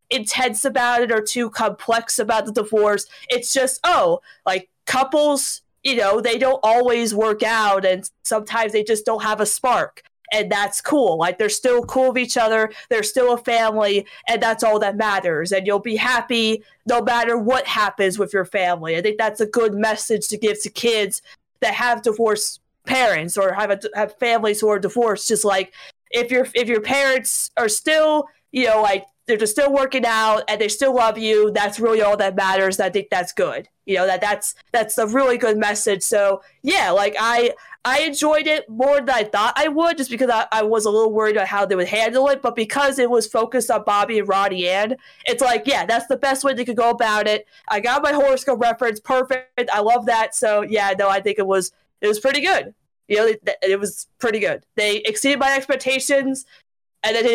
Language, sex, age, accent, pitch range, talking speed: English, female, 20-39, American, 210-255 Hz, 210 wpm